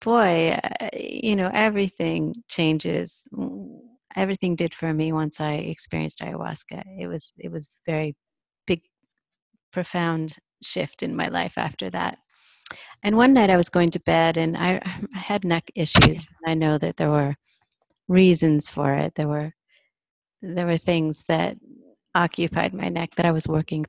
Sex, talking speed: female, 155 wpm